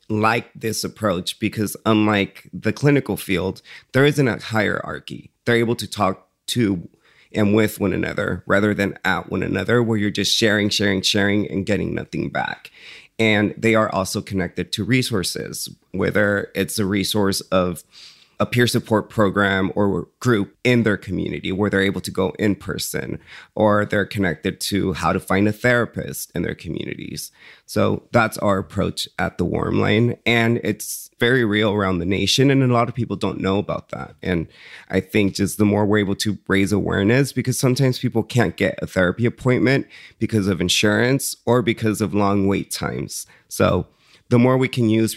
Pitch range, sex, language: 95-115 Hz, male, English